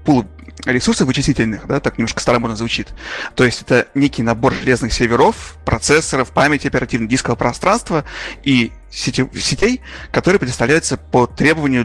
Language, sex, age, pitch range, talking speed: Russian, male, 30-49, 120-150 Hz, 125 wpm